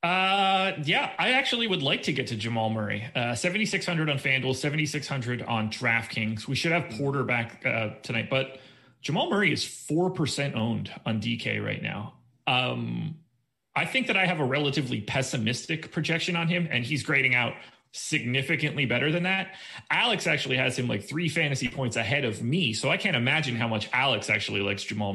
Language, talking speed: English, 185 wpm